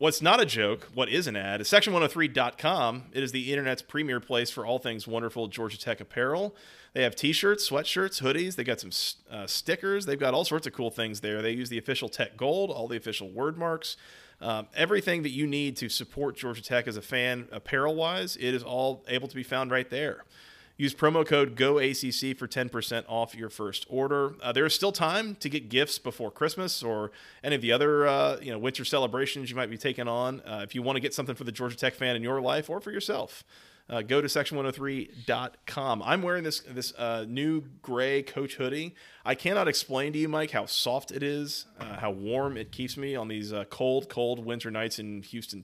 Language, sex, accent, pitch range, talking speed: English, male, American, 115-145 Hz, 215 wpm